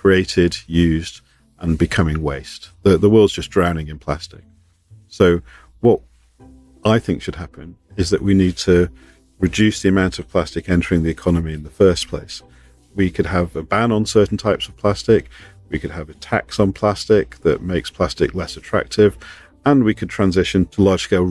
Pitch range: 85-105 Hz